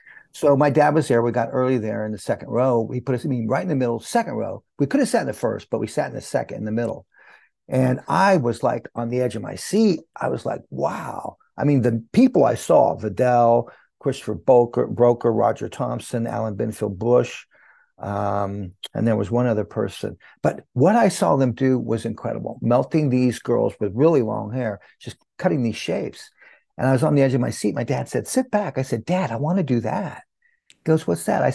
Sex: male